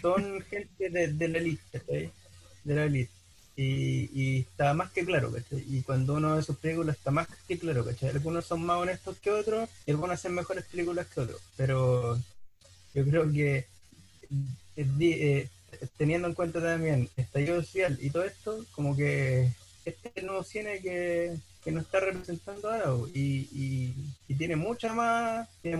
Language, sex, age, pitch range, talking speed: Spanish, male, 30-49, 130-180 Hz, 180 wpm